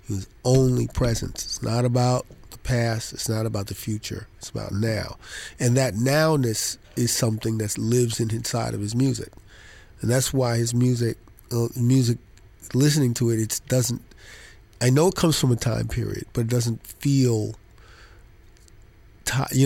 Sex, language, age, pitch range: male, English, 40-59, 110-125 Hz